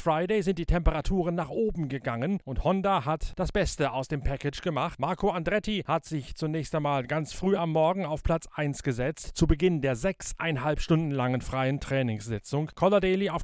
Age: 40-59